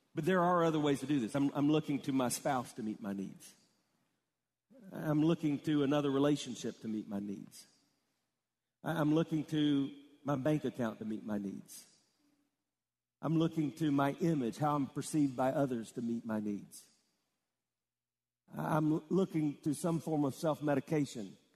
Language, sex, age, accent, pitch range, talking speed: English, male, 50-69, American, 110-155 Hz, 160 wpm